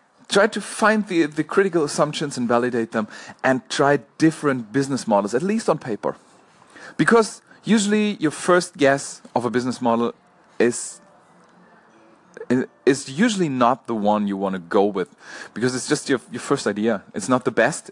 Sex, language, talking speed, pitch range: male, English, 165 wpm, 110-160 Hz